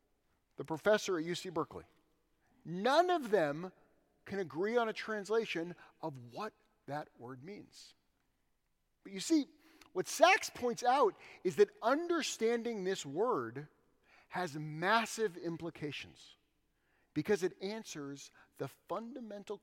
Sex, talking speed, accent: male, 115 wpm, American